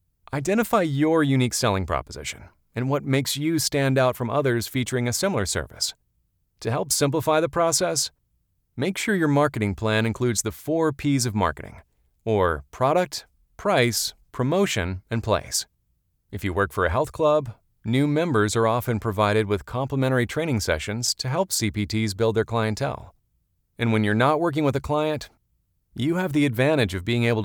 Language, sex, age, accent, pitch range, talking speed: English, male, 40-59, American, 105-150 Hz, 165 wpm